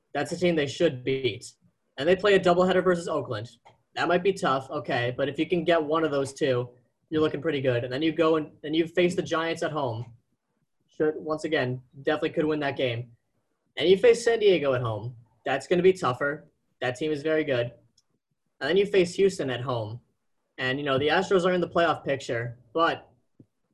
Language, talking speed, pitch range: English, 215 wpm, 130-180 Hz